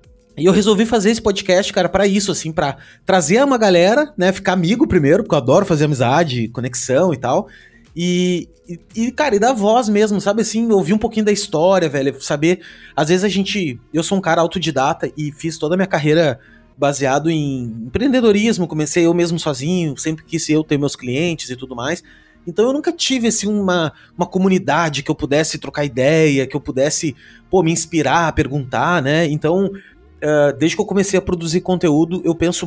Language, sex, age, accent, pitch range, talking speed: Portuguese, male, 20-39, Brazilian, 145-195 Hz, 195 wpm